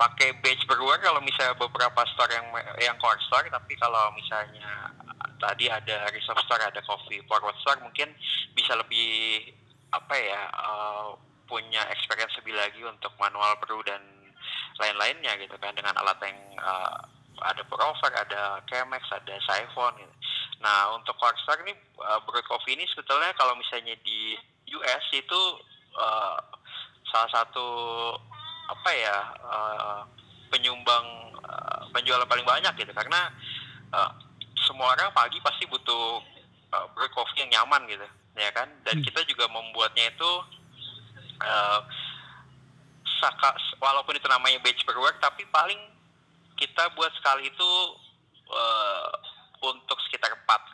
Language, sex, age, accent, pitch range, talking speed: Indonesian, male, 20-39, native, 105-135 Hz, 135 wpm